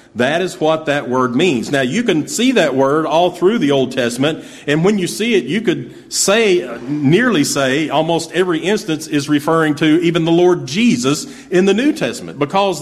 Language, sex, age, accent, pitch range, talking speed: English, male, 40-59, American, 140-180 Hz, 195 wpm